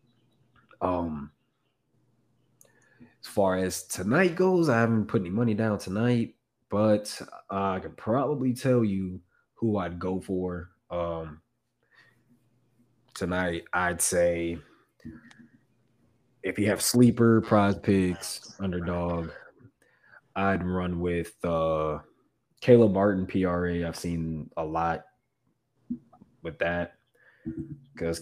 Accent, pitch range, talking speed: American, 85-115 Hz, 100 wpm